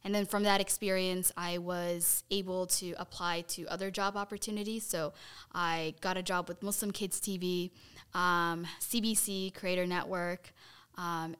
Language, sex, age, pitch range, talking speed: English, female, 10-29, 175-200 Hz, 145 wpm